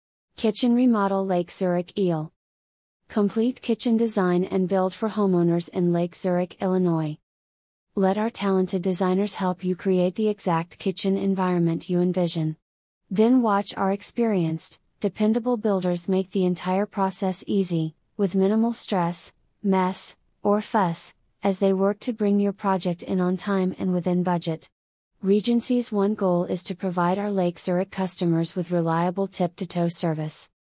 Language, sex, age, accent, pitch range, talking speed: English, female, 30-49, American, 175-200 Hz, 145 wpm